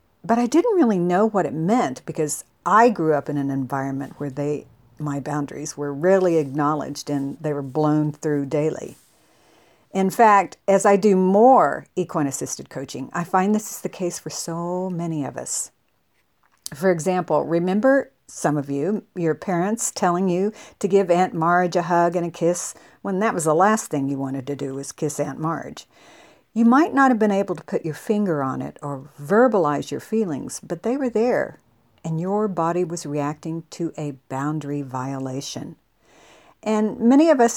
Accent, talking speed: American, 180 wpm